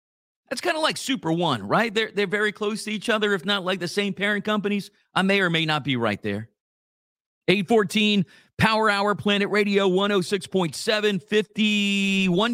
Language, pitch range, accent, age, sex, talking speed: English, 130-210 Hz, American, 40-59, male, 170 wpm